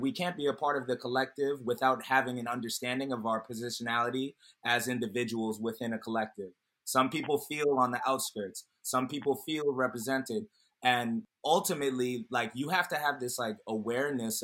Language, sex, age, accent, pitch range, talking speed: English, male, 20-39, American, 125-145 Hz, 165 wpm